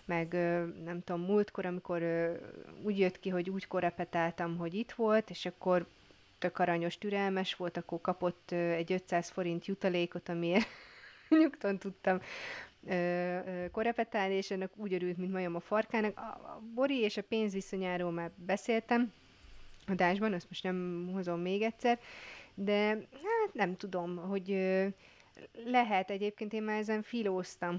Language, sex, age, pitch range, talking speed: Hungarian, female, 30-49, 175-210 Hz, 135 wpm